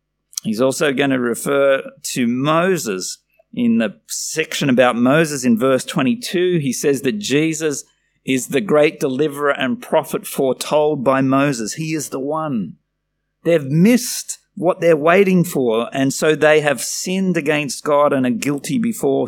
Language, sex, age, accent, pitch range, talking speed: English, male, 50-69, Australian, 135-190 Hz, 155 wpm